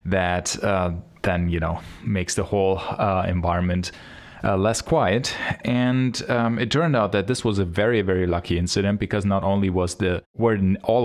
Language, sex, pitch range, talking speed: English, male, 95-115 Hz, 180 wpm